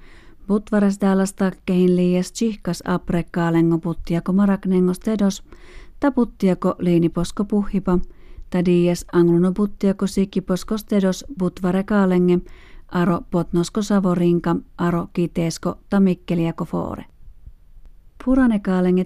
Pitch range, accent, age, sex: 175-195 Hz, native, 40-59, female